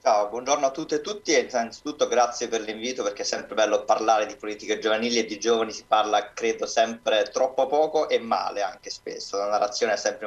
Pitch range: 105-160 Hz